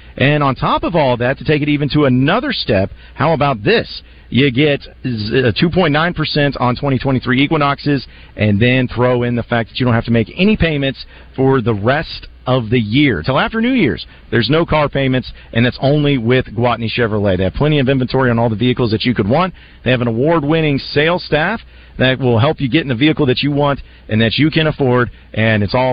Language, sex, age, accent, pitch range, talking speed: English, male, 40-59, American, 120-145 Hz, 220 wpm